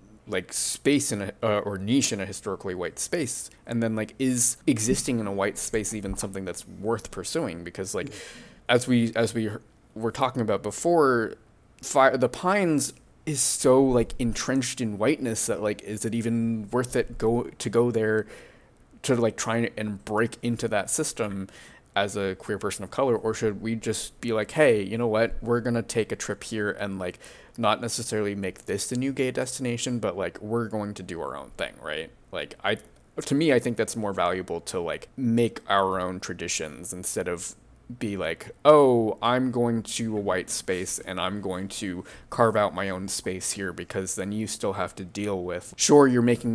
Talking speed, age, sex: 195 wpm, 20-39, male